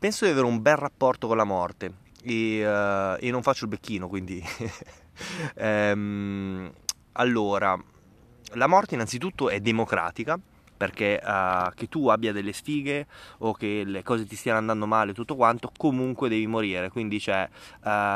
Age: 20-39